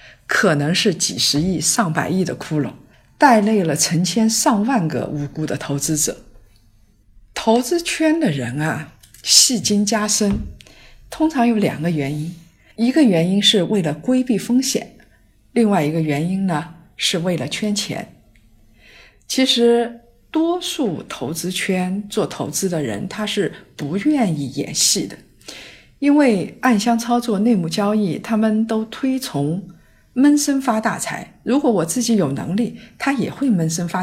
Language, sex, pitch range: Chinese, female, 150-230 Hz